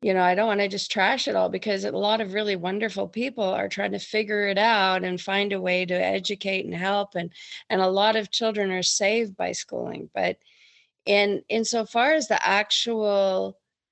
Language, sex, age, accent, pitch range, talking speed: English, female, 40-59, American, 185-230 Hz, 205 wpm